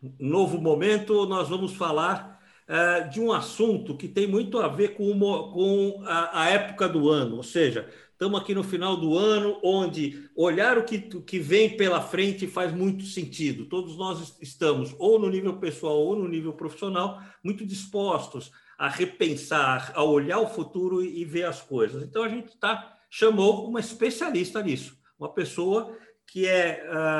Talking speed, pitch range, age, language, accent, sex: 165 wpm, 160-205 Hz, 60-79, Portuguese, Brazilian, male